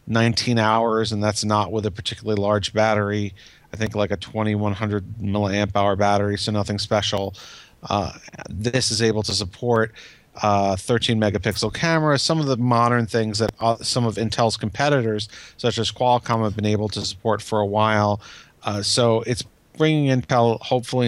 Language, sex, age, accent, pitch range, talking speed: English, male, 40-59, American, 100-115 Hz, 170 wpm